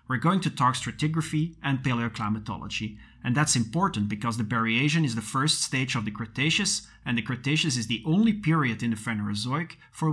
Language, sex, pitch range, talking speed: English, male, 115-155 Hz, 185 wpm